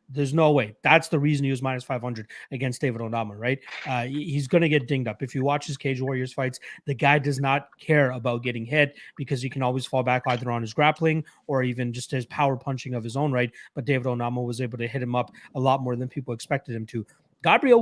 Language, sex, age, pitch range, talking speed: English, male, 30-49, 125-160 Hz, 250 wpm